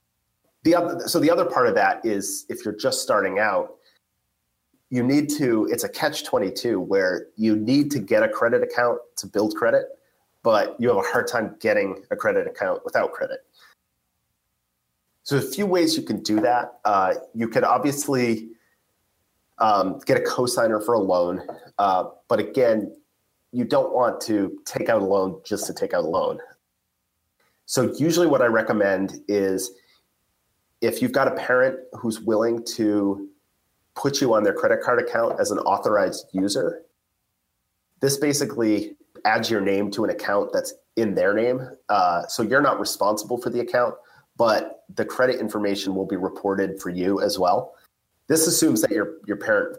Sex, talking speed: male, 170 wpm